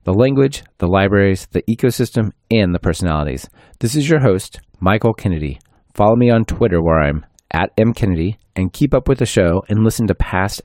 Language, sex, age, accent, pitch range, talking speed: English, male, 30-49, American, 90-120 Hz, 185 wpm